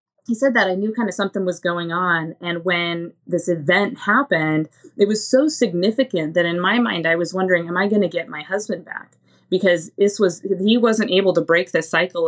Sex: female